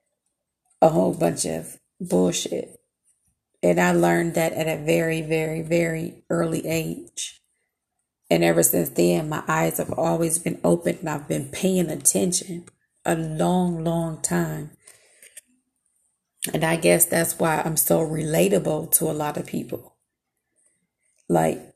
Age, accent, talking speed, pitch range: 30-49, American, 135 wpm, 155-180 Hz